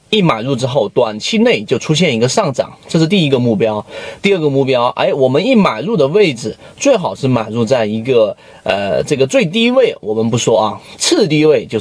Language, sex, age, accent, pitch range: Chinese, male, 30-49, native, 120-195 Hz